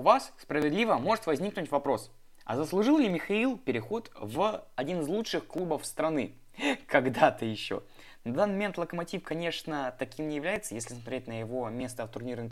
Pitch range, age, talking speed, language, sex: 125-185 Hz, 20-39, 165 wpm, Russian, male